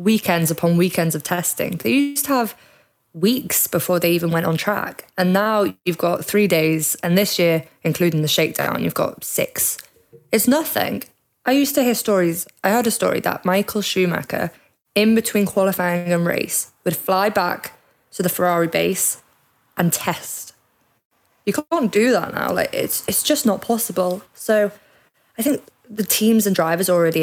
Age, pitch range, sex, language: 20-39, 170-210 Hz, female, English